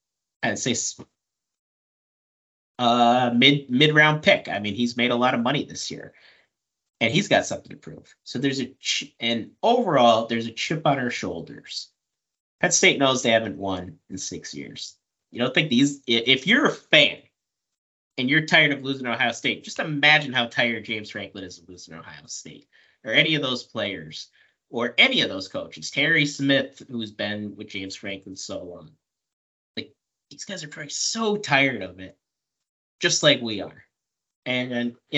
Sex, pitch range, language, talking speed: male, 105-140 Hz, English, 175 wpm